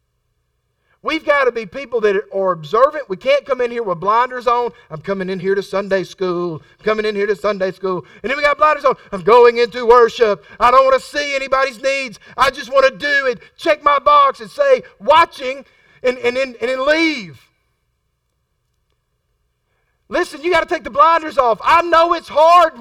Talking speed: 205 wpm